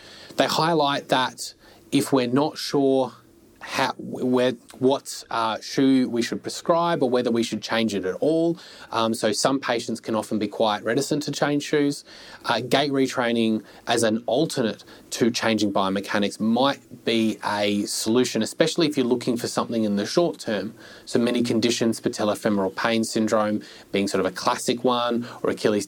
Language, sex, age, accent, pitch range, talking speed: English, male, 20-39, Australian, 110-130 Hz, 160 wpm